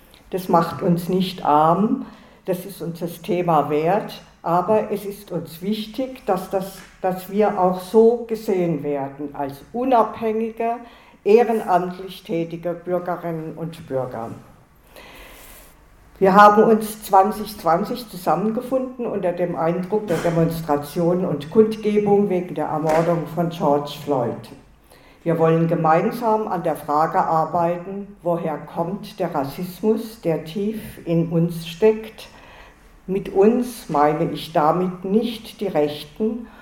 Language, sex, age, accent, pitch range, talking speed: German, female, 50-69, German, 165-205 Hz, 120 wpm